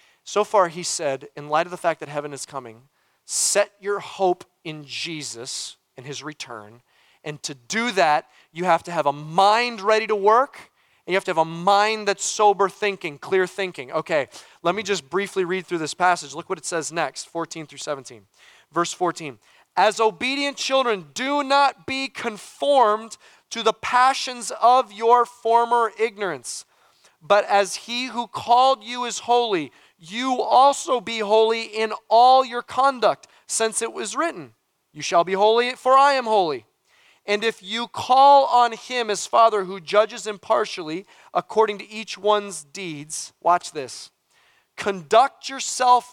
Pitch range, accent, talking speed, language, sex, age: 175-240 Hz, American, 165 wpm, English, male, 30-49